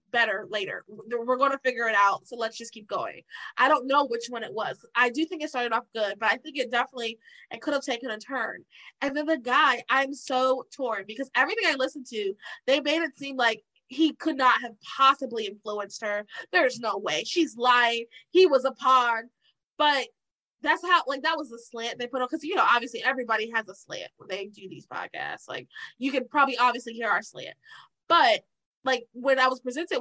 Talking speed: 215 wpm